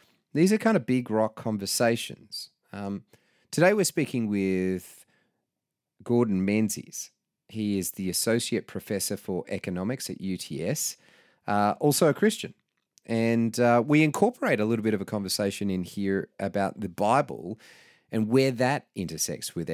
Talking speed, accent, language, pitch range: 145 wpm, Australian, English, 95-125 Hz